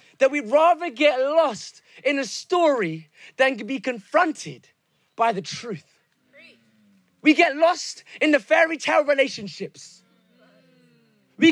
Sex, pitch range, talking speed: male, 255-330 Hz, 120 wpm